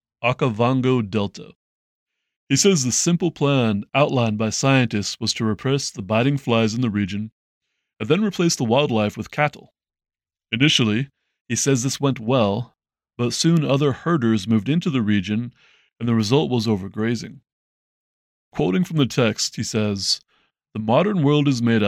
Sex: male